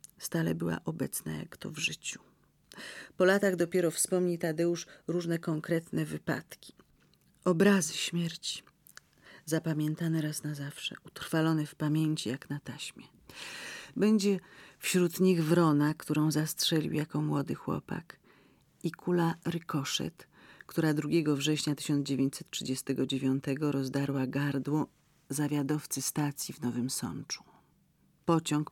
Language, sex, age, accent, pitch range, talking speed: Polish, female, 40-59, native, 135-165 Hz, 105 wpm